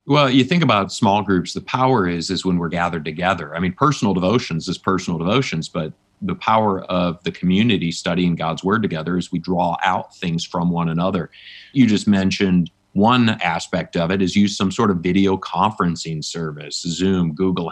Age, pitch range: 30-49, 90-105 Hz